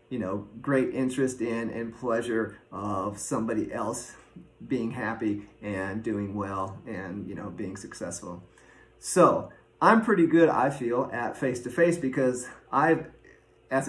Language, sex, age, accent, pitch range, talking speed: English, male, 30-49, American, 125-145 Hz, 145 wpm